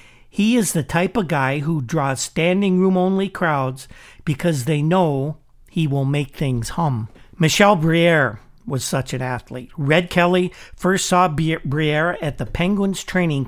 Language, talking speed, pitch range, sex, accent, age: English, 145 wpm, 140-180 Hz, male, American, 60-79